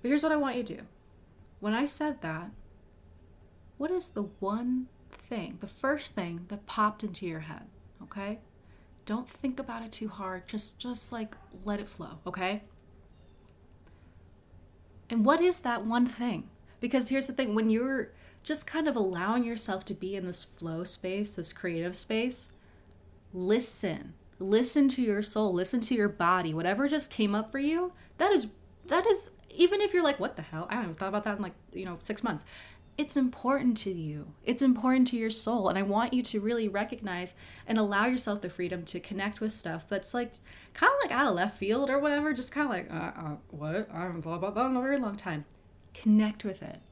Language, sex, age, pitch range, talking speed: English, female, 20-39, 180-245 Hz, 200 wpm